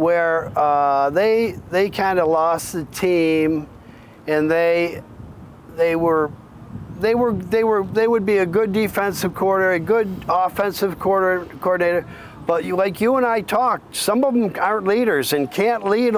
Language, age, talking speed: English, 50-69, 160 wpm